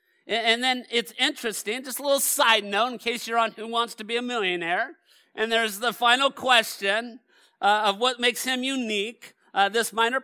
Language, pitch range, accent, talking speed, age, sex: English, 220-265 Hz, American, 195 wpm, 50-69, male